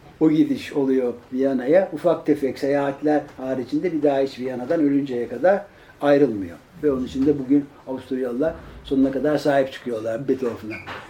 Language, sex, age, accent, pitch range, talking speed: Turkish, male, 60-79, native, 135-175 Hz, 140 wpm